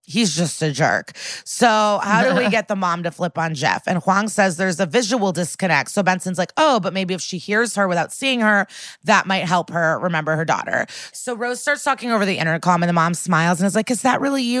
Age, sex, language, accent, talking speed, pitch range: 20-39, female, English, American, 245 wpm, 175-210 Hz